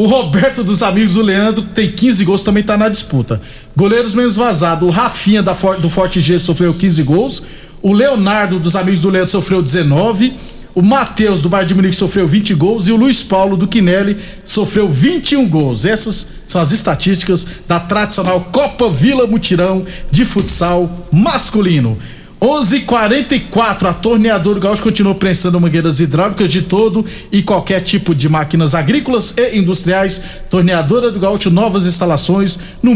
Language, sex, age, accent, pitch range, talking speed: Portuguese, male, 50-69, Brazilian, 170-210 Hz, 160 wpm